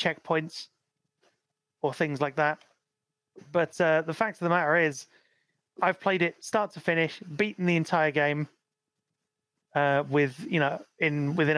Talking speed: 150 wpm